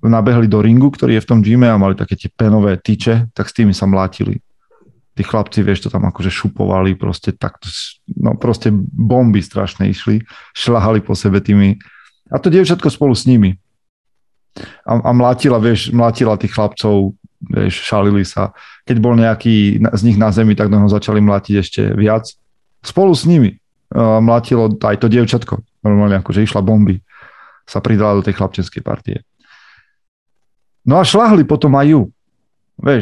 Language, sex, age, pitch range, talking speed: Slovak, male, 40-59, 100-120 Hz, 165 wpm